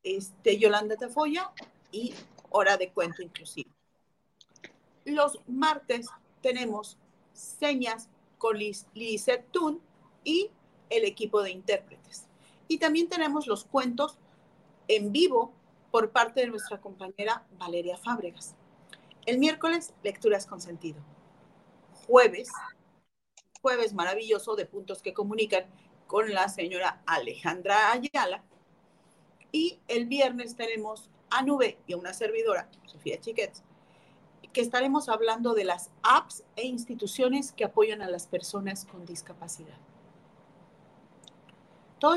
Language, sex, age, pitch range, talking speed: Spanish, female, 40-59, 180-260 Hz, 115 wpm